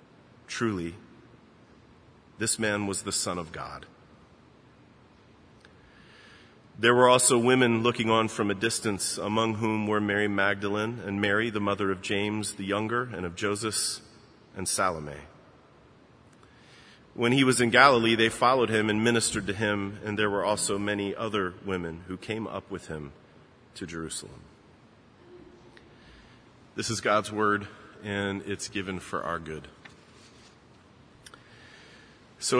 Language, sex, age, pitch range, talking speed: English, male, 40-59, 100-120 Hz, 135 wpm